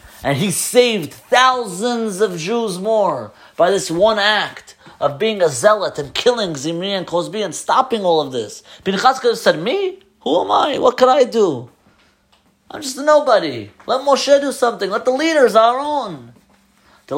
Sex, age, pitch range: male, 30-49, 160-235 Hz